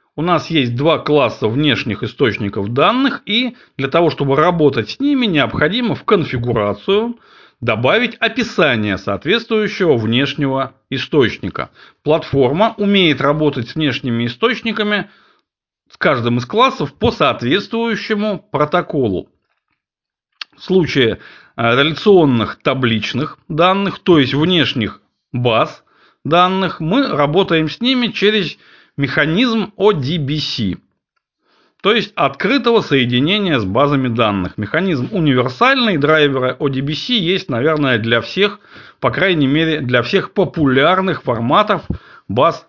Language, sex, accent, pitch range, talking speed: Russian, male, native, 125-185 Hz, 105 wpm